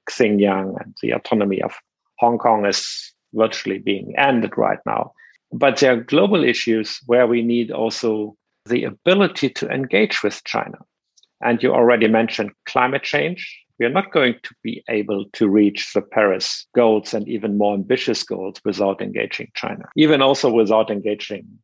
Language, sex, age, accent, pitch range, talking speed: English, male, 50-69, German, 110-130 Hz, 160 wpm